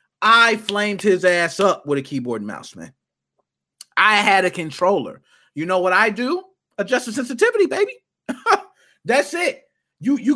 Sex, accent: male, American